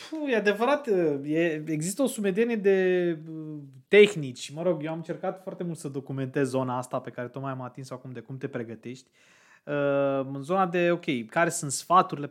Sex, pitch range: male, 135-185 Hz